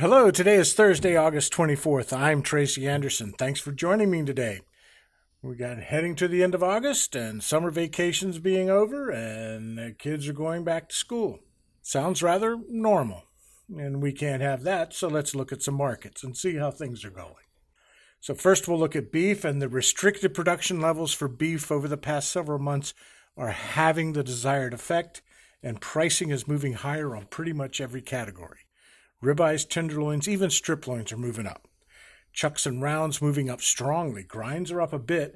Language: English